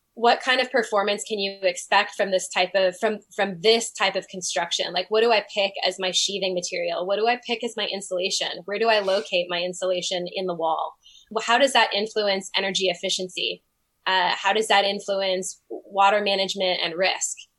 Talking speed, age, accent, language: 195 wpm, 10-29, American, English